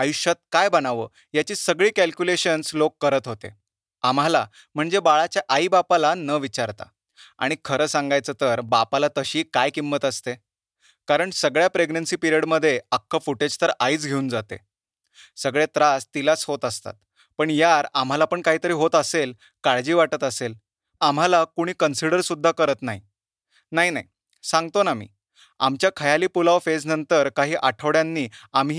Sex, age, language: male, 30-49, Marathi